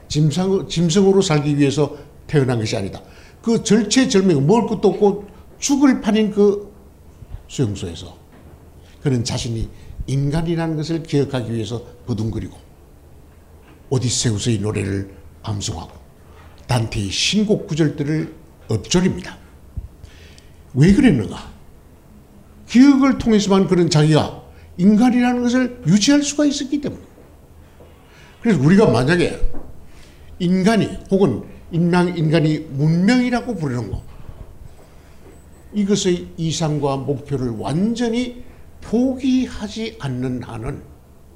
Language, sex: Korean, male